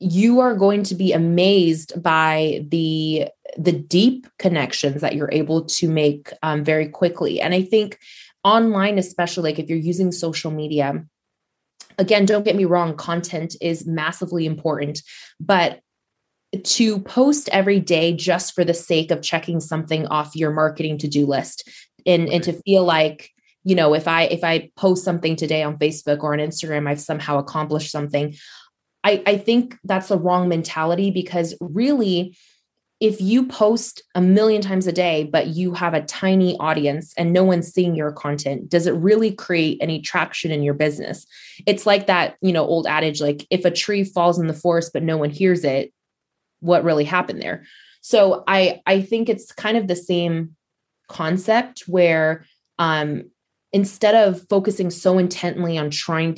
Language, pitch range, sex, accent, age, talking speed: English, 155-190 Hz, female, American, 20-39, 170 wpm